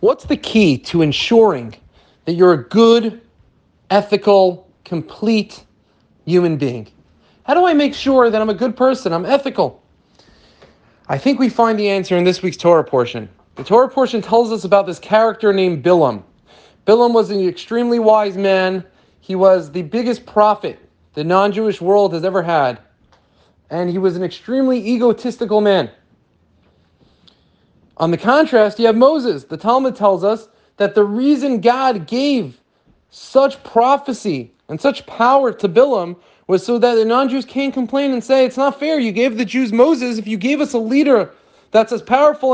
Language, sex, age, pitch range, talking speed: English, male, 30-49, 190-265 Hz, 165 wpm